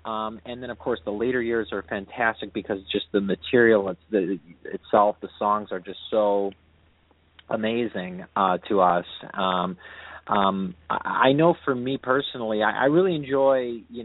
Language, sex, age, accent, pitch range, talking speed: English, male, 30-49, American, 95-120 Hz, 155 wpm